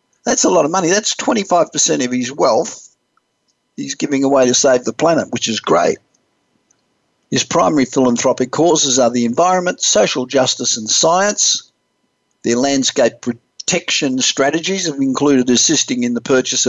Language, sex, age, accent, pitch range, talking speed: English, male, 50-69, Australian, 120-140 Hz, 145 wpm